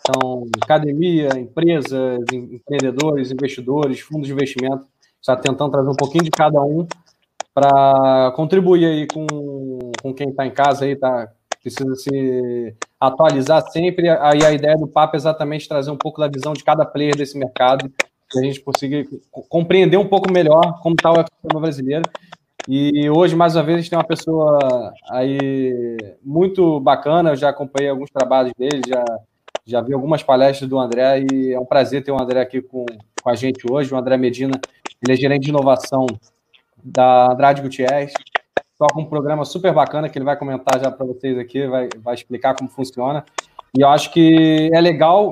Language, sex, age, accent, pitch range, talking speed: Portuguese, male, 20-39, Brazilian, 130-155 Hz, 175 wpm